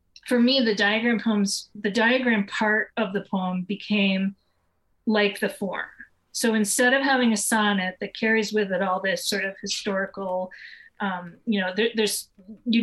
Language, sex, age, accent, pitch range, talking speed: English, female, 30-49, American, 195-225 Hz, 165 wpm